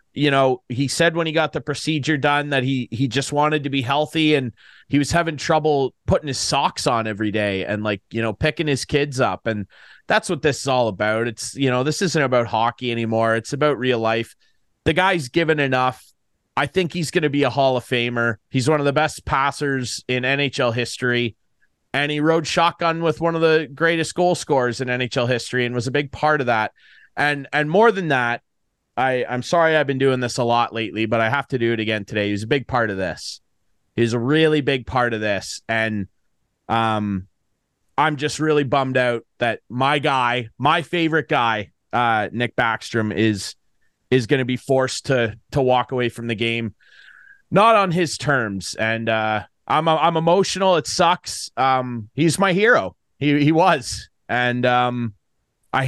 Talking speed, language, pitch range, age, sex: 200 wpm, English, 115-150 Hz, 30-49, male